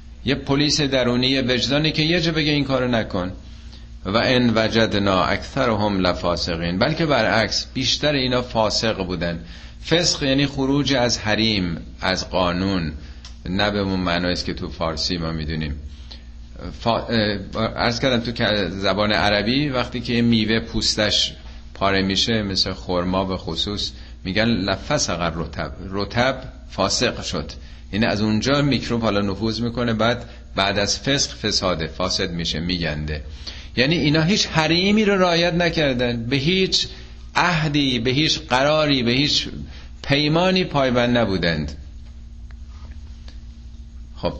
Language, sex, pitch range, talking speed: Persian, male, 85-125 Hz, 130 wpm